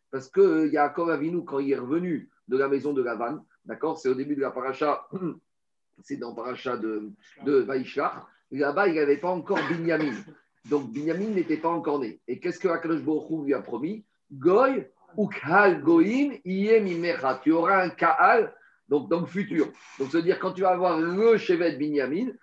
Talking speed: 195 wpm